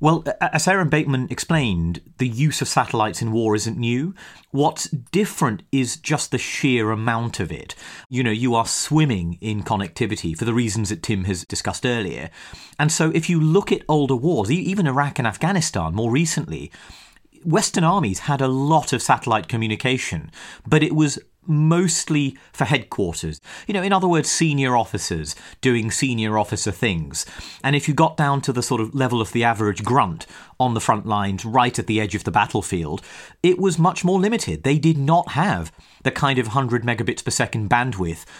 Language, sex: English, male